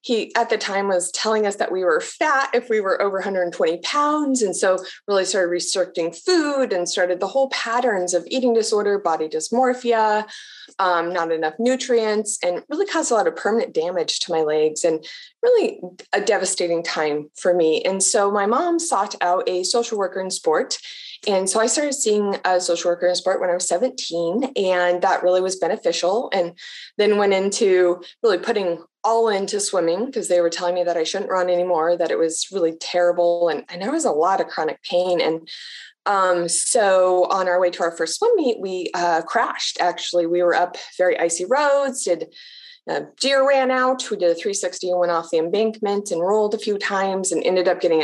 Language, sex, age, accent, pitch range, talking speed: English, female, 20-39, American, 175-235 Hz, 205 wpm